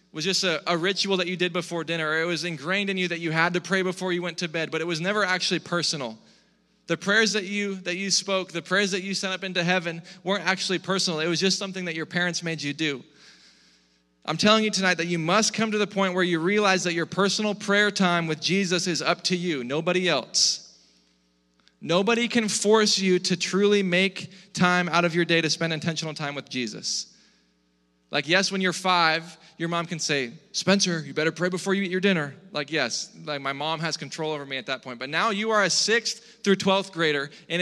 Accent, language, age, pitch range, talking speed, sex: American, English, 20-39, 160-195 Hz, 230 wpm, male